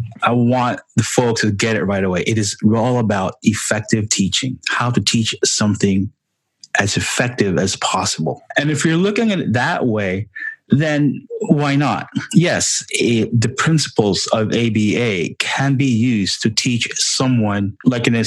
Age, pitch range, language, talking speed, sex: 30-49, 100-120 Hz, English, 160 wpm, male